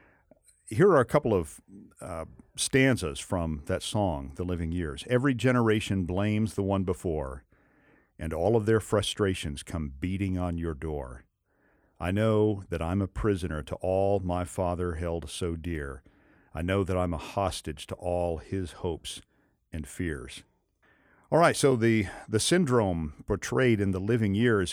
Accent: American